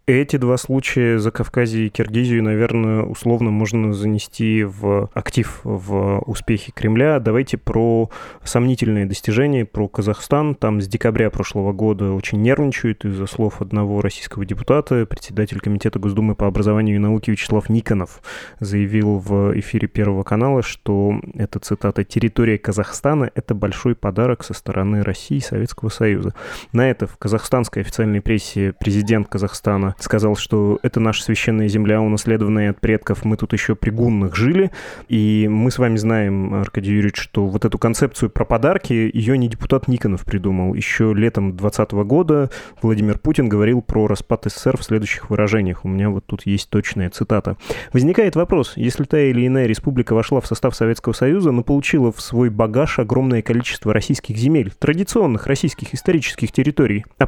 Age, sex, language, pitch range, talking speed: 20-39, male, Russian, 105-125 Hz, 155 wpm